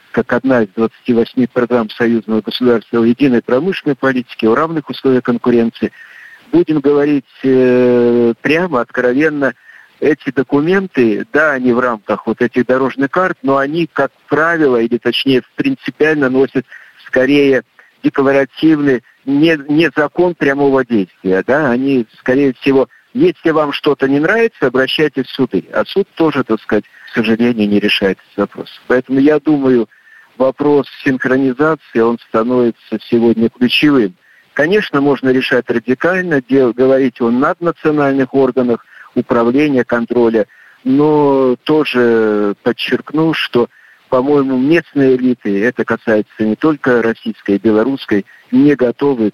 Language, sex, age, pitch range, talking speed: Russian, male, 50-69, 120-145 Hz, 125 wpm